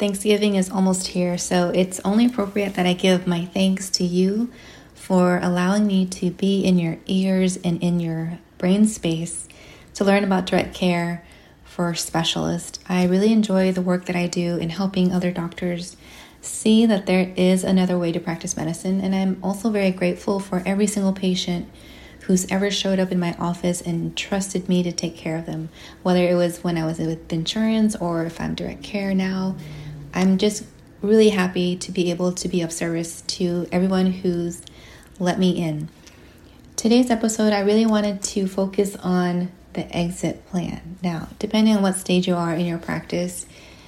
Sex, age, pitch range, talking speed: female, 20-39, 175-195 Hz, 180 wpm